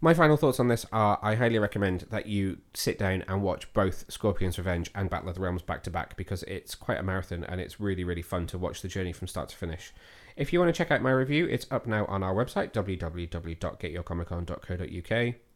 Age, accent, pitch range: 30-49, British, 95-130 Hz